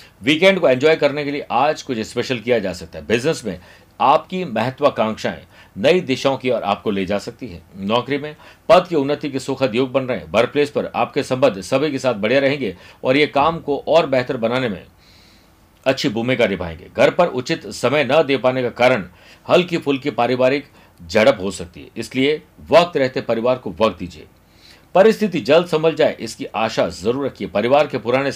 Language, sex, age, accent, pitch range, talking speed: Hindi, male, 50-69, native, 110-150 Hz, 120 wpm